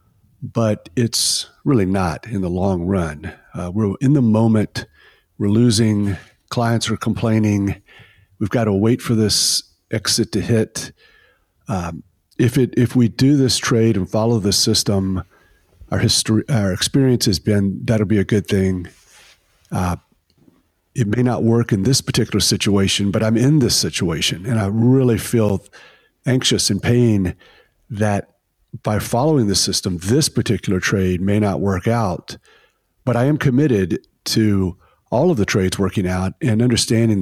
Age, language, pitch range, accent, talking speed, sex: 50-69, English, 100-120 Hz, American, 155 wpm, male